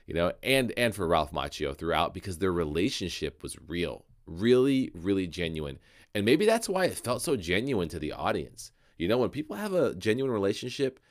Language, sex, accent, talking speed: English, male, American, 190 wpm